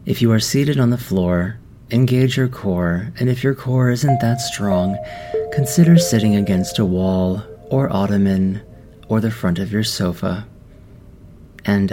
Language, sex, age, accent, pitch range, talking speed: English, male, 30-49, American, 95-120 Hz, 155 wpm